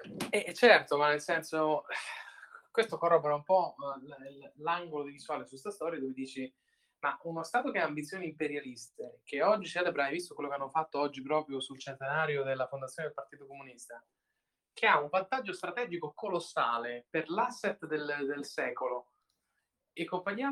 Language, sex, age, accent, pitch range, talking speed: Italian, male, 20-39, native, 140-190 Hz, 160 wpm